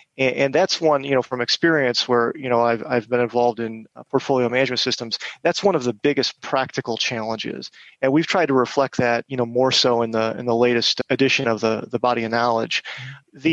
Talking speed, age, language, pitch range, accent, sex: 215 wpm, 30-49, English, 120-140 Hz, American, male